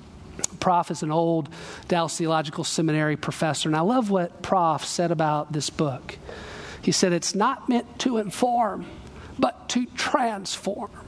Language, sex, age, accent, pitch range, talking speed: English, male, 40-59, American, 175-225 Hz, 145 wpm